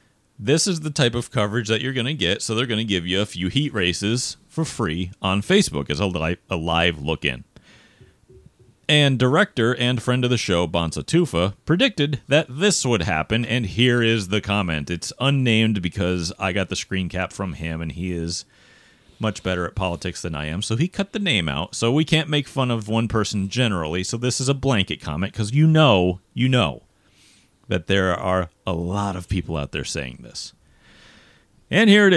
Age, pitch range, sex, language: 30-49, 90-115 Hz, male, English